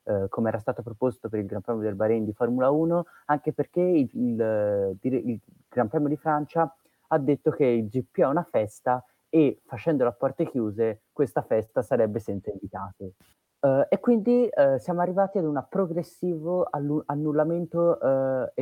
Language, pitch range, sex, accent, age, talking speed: Italian, 115-150 Hz, male, native, 30-49, 170 wpm